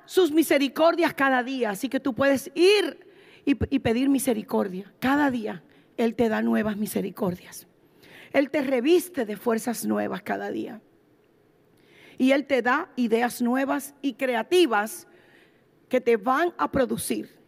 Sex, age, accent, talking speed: female, 40-59, American, 140 wpm